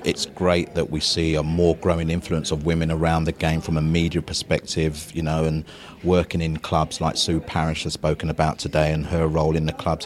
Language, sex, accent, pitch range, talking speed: English, male, British, 80-90 Hz, 220 wpm